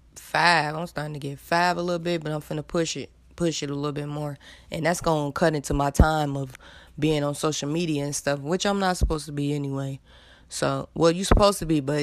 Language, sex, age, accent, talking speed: English, female, 20-39, American, 240 wpm